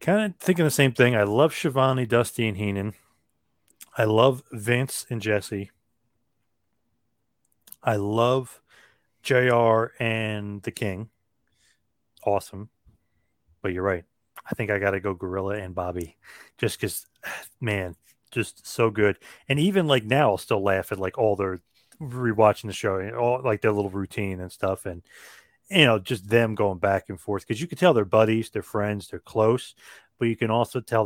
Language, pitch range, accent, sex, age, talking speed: English, 100-130 Hz, American, male, 30-49, 170 wpm